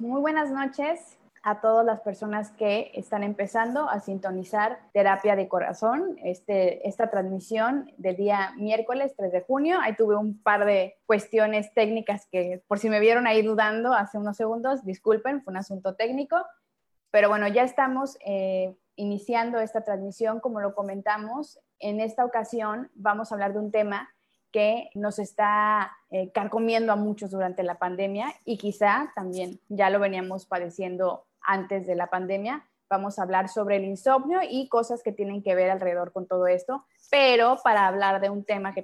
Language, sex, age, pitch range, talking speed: Spanish, female, 20-39, 190-225 Hz, 170 wpm